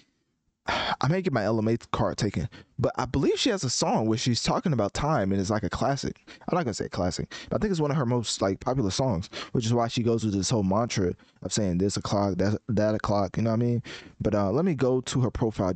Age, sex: 20-39, male